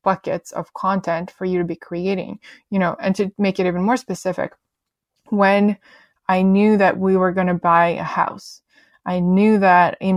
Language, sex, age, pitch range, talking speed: English, female, 20-39, 180-195 Hz, 190 wpm